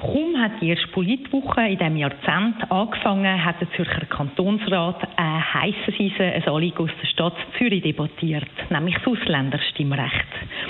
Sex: female